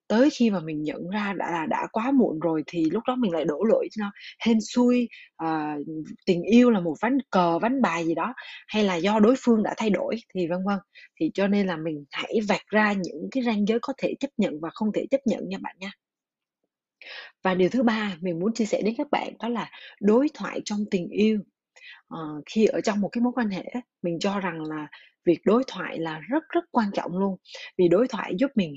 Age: 20-39